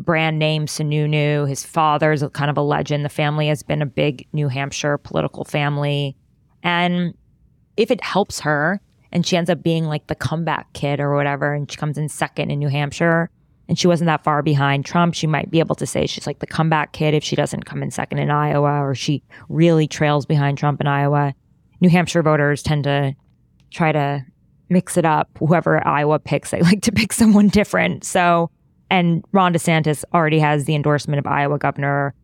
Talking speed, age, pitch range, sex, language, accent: 200 wpm, 20-39, 145-170 Hz, female, English, American